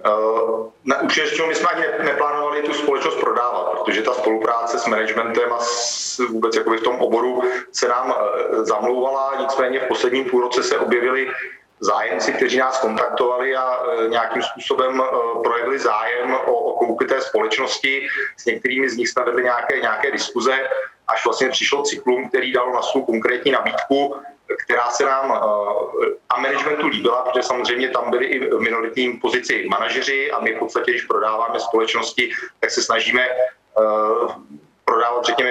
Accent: native